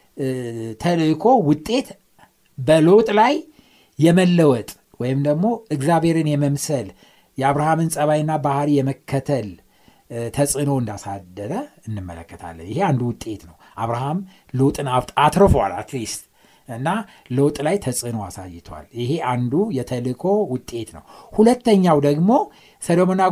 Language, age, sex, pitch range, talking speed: Amharic, 60-79, male, 130-180 Hz, 105 wpm